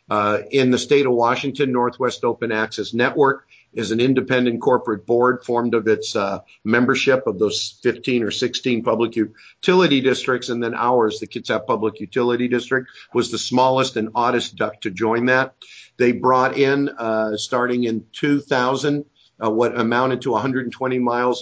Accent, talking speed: American, 160 wpm